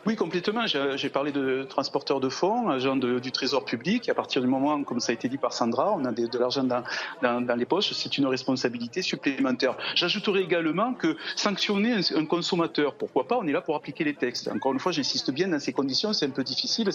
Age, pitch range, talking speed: 40-59, 135-210 Hz, 225 wpm